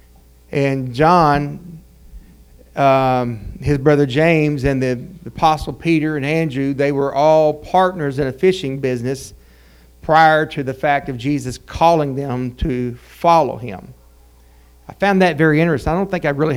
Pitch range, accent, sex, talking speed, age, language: 120-165 Hz, American, male, 150 wpm, 40-59, English